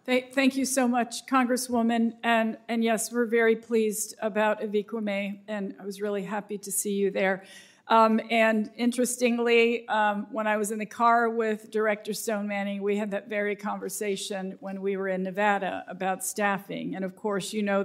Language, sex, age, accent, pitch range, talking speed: English, female, 50-69, American, 195-220 Hz, 180 wpm